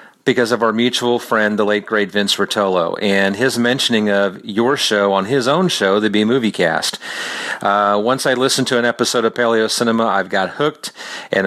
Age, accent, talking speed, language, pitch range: 40-59, American, 195 wpm, English, 100-120 Hz